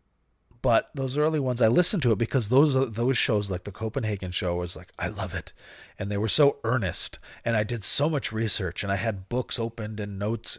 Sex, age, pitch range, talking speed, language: male, 30-49, 100-140 Hz, 225 wpm, English